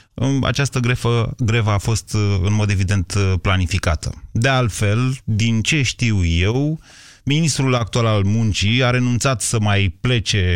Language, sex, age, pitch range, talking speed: Romanian, male, 30-49, 95-125 Hz, 130 wpm